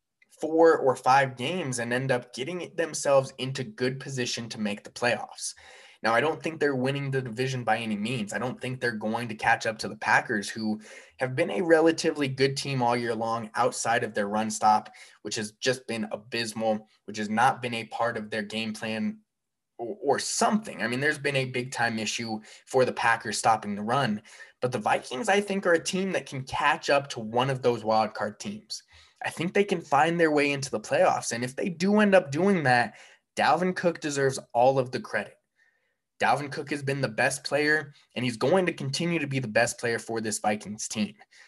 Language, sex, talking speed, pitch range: English, male, 215 wpm, 115-145 Hz